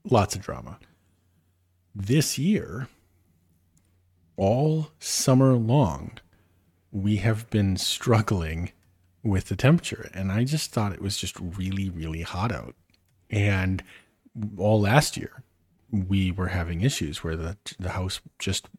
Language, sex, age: English, male, 40-59